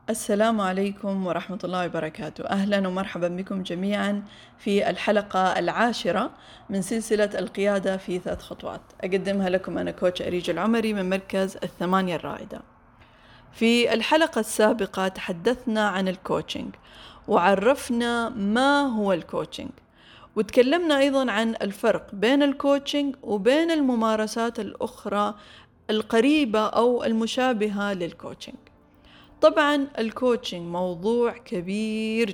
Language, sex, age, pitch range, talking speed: Arabic, female, 20-39, 195-240 Hz, 100 wpm